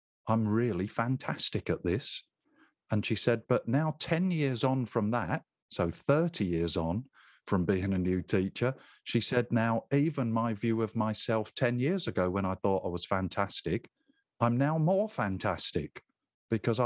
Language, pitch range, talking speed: English, 90-120 Hz, 165 wpm